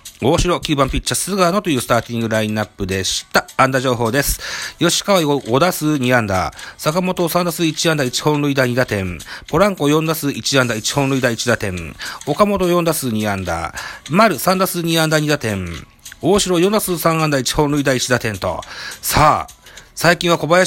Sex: male